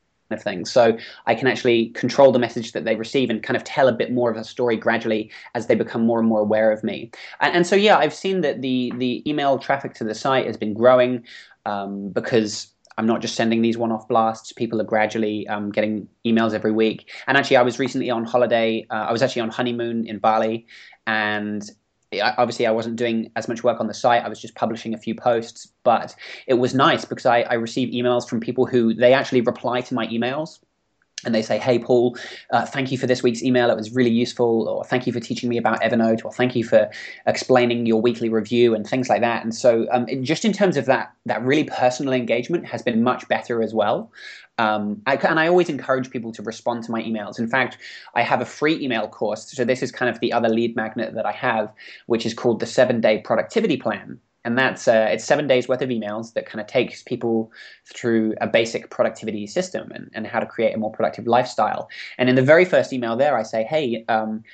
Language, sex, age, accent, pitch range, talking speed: English, male, 20-39, British, 110-125 Hz, 230 wpm